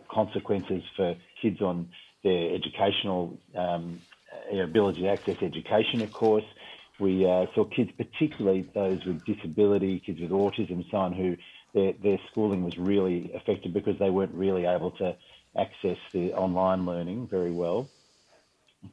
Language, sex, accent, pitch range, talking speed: English, male, Australian, 95-105 Hz, 145 wpm